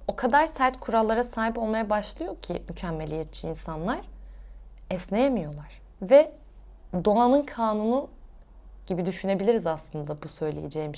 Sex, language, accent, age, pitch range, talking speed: female, Turkish, native, 20-39, 170-230 Hz, 105 wpm